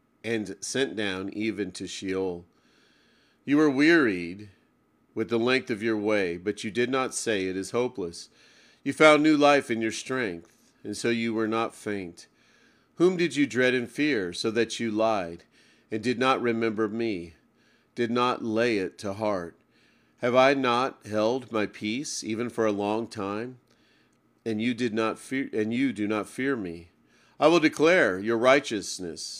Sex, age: male, 40-59